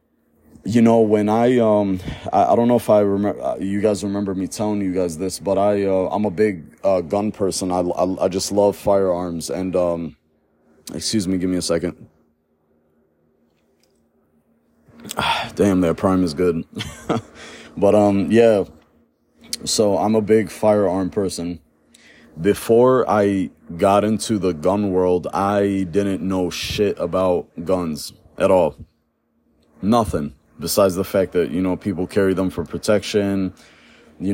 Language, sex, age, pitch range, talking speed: English, male, 30-49, 90-100 Hz, 150 wpm